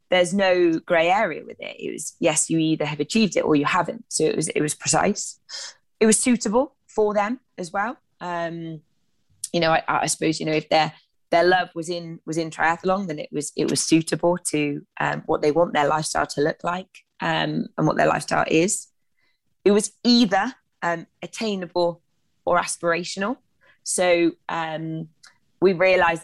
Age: 20-39